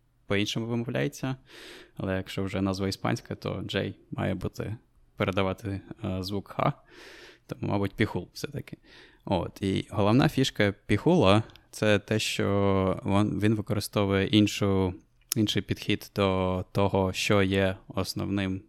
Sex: male